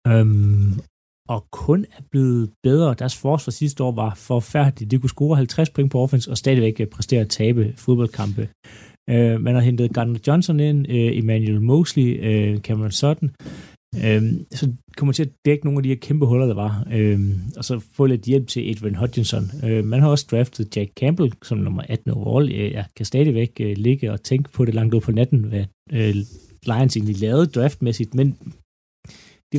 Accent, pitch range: native, 110-130 Hz